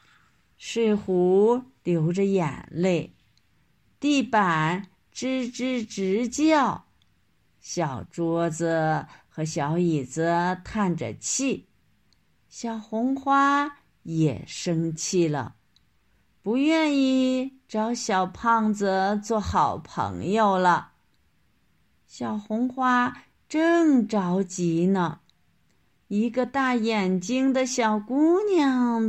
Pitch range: 175-250 Hz